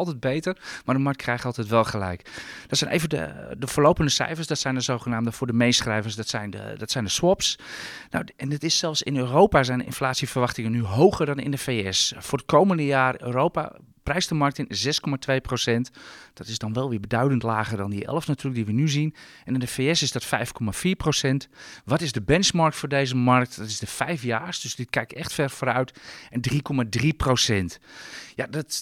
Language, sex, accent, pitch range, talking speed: Dutch, male, Dutch, 125-160 Hz, 215 wpm